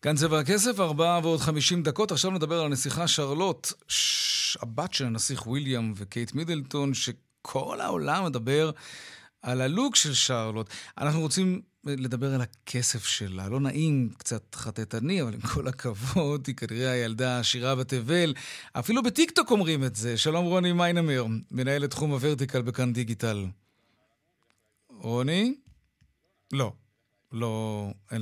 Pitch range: 120-160 Hz